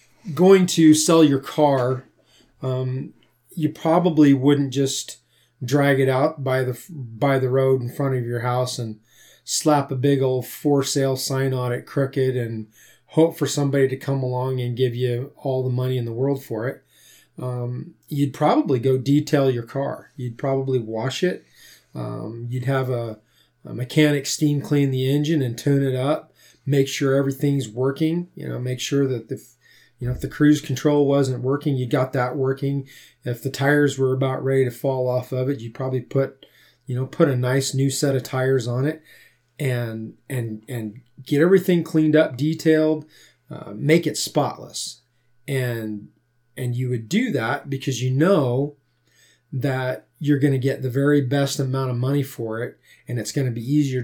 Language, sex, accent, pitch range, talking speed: English, male, American, 125-145 Hz, 180 wpm